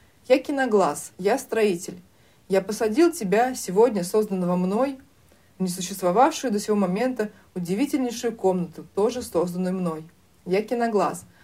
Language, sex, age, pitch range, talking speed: Russian, female, 30-49, 180-235 Hz, 115 wpm